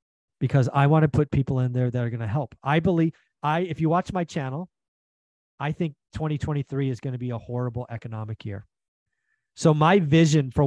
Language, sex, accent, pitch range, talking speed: English, male, American, 125-180 Hz, 200 wpm